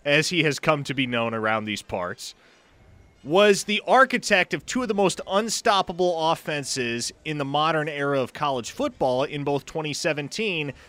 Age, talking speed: 30-49, 165 wpm